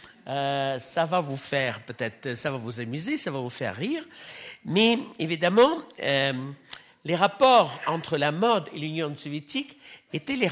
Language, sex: French, male